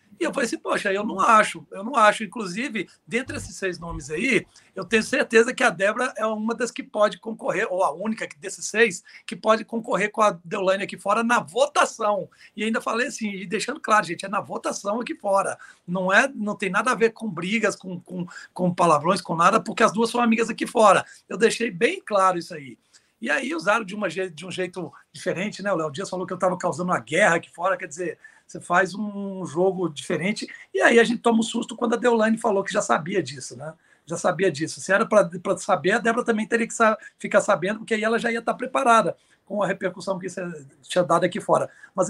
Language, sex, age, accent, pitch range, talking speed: Portuguese, male, 60-79, Brazilian, 180-230 Hz, 230 wpm